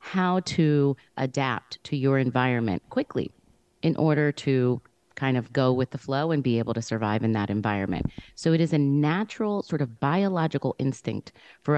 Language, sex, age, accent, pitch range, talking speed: English, female, 30-49, American, 115-145 Hz, 175 wpm